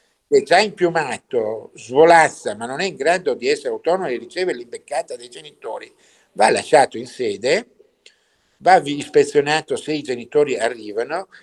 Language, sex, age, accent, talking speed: Italian, male, 60-79, native, 145 wpm